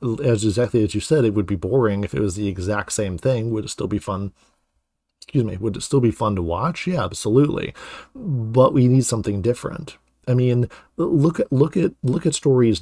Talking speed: 215 wpm